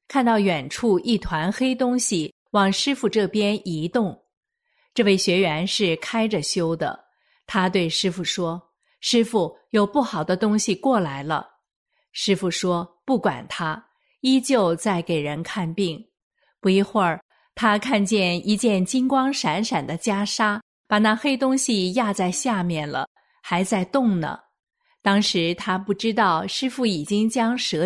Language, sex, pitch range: Chinese, female, 180-235 Hz